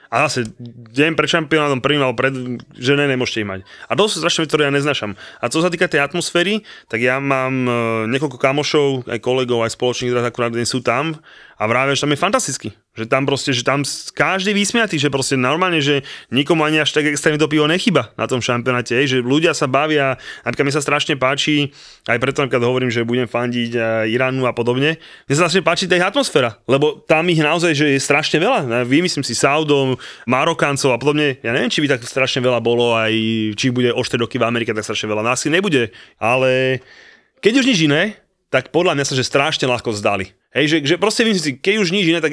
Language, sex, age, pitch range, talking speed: Slovak, male, 30-49, 125-155 Hz, 215 wpm